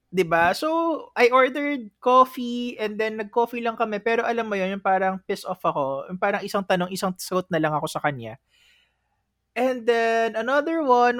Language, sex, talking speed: Filipino, male, 180 wpm